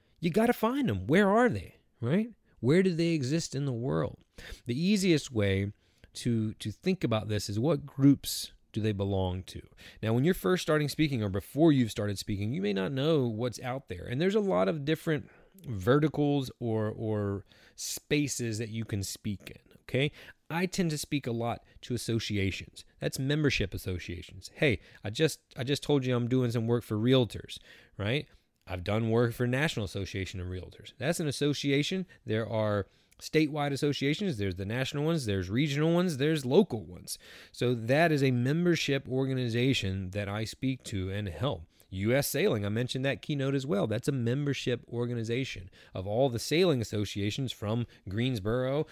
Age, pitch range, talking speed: 30-49, 105-145 Hz, 180 wpm